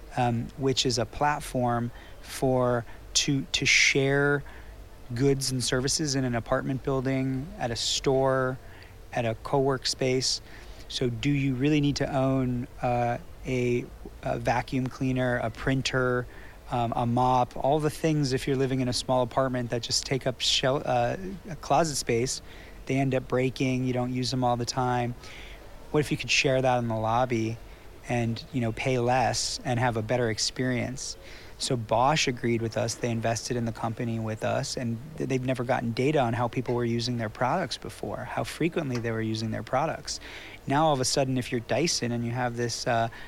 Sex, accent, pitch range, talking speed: male, American, 115-135 Hz, 185 wpm